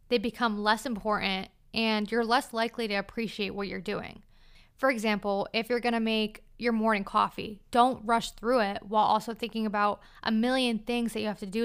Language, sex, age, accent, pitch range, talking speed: English, female, 20-39, American, 205-245 Hz, 200 wpm